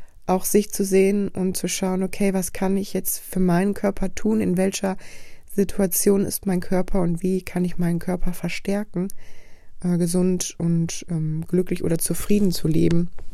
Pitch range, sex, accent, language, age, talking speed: 170-200 Hz, female, German, German, 20-39, 170 wpm